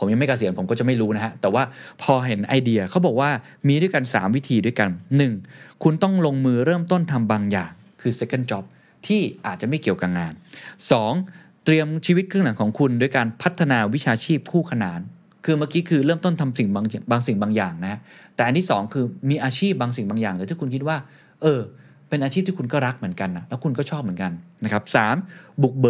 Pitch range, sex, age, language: 110-155 Hz, male, 20-39, Thai